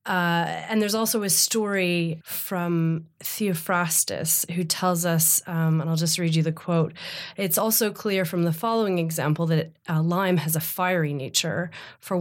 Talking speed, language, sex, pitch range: 165 wpm, English, female, 160-180 Hz